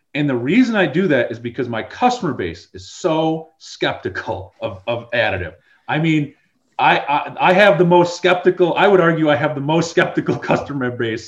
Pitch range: 110-150 Hz